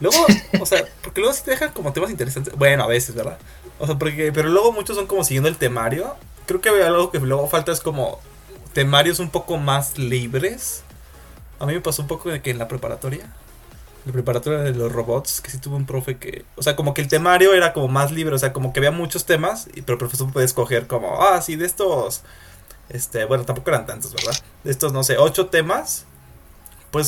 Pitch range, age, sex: 120-155 Hz, 20-39, male